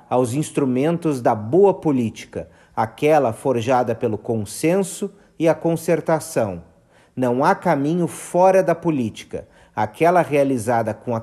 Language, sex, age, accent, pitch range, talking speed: Portuguese, male, 40-59, Brazilian, 115-160 Hz, 120 wpm